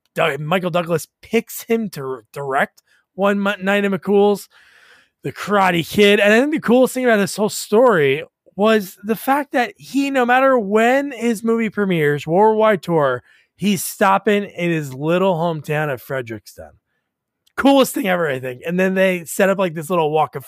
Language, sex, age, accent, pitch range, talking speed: English, male, 20-39, American, 160-230 Hz, 175 wpm